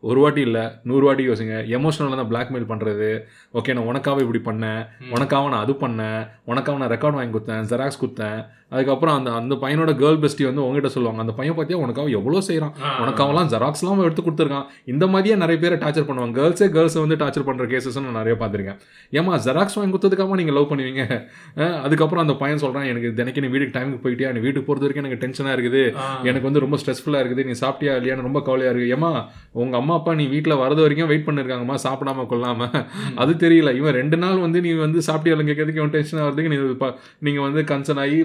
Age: 20-39